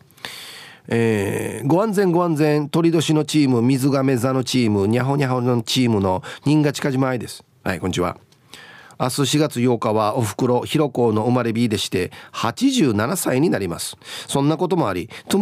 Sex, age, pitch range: male, 40-59, 120-175 Hz